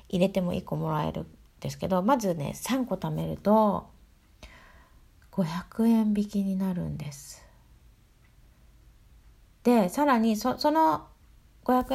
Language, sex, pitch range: Japanese, female, 170-235 Hz